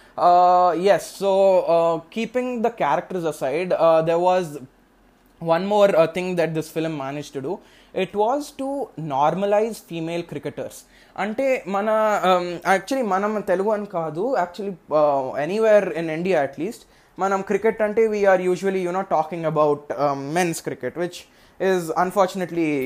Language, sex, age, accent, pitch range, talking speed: Telugu, male, 20-39, native, 155-200 Hz, 145 wpm